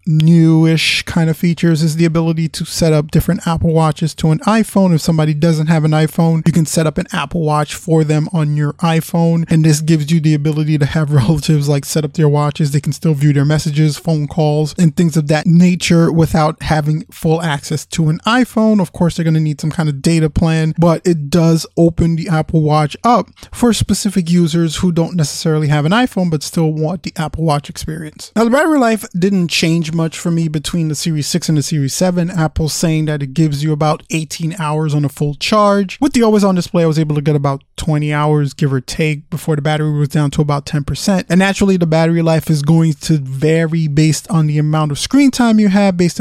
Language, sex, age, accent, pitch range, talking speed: English, male, 20-39, American, 150-170 Hz, 230 wpm